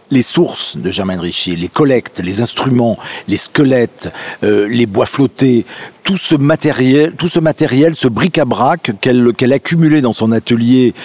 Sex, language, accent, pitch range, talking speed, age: male, French, French, 110-145 Hz, 150 wpm, 50-69